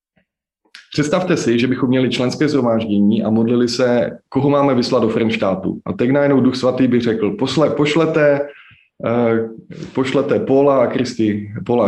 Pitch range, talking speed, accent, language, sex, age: 115-145 Hz, 150 wpm, native, Czech, male, 20-39